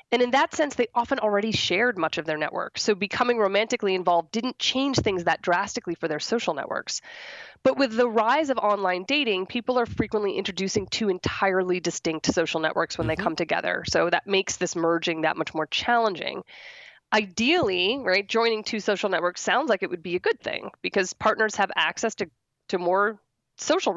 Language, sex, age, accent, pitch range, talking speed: English, female, 20-39, American, 180-235 Hz, 190 wpm